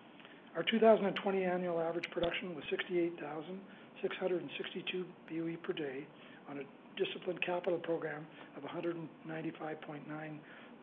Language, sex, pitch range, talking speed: English, male, 160-185 Hz, 95 wpm